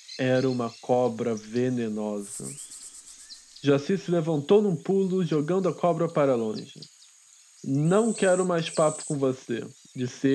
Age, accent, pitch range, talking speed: 20-39, Brazilian, 130-175 Hz, 120 wpm